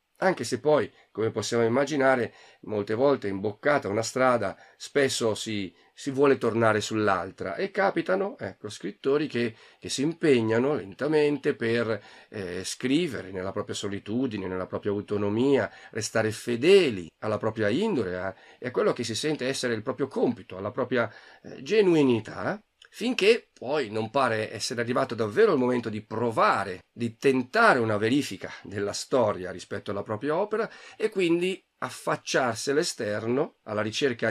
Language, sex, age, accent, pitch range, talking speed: Italian, male, 40-59, native, 105-135 Hz, 145 wpm